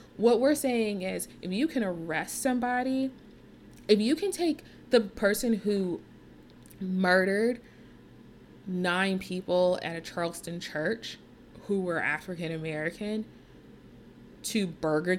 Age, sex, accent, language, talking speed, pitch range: 20-39, female, American, English, 115 wpm, 175-235 Hz